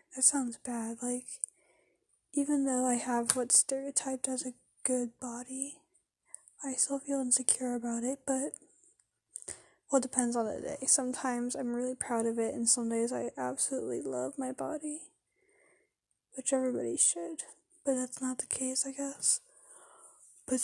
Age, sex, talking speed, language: 10-29, female, 150 wpm, English